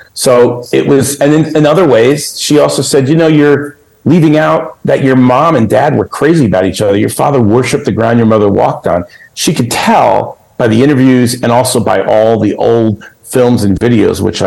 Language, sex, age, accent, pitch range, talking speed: English, male, 50-69, American, 105-140 Hz, 210 wpm